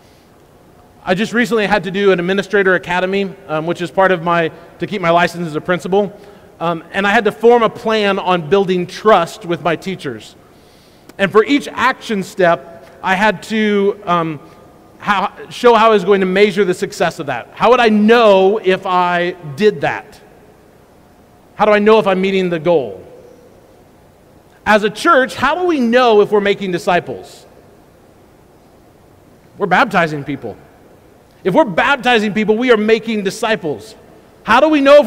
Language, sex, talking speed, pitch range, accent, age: English, male, 170 wpm, 185-235 Hz, American, 40-59